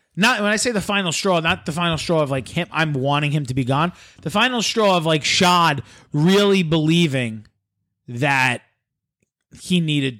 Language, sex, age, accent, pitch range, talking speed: English, male, 30-49, American, 105-175 Hz, 180 wpm